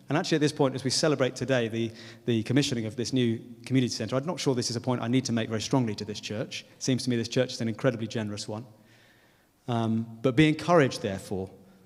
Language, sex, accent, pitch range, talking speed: English, male, British, 115-150 Hz, 250 wpm